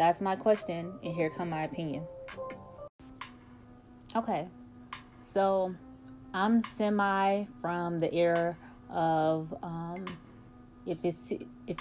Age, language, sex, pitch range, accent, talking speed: 20-39, English, female, 135-190 Hz, American, 100 wpm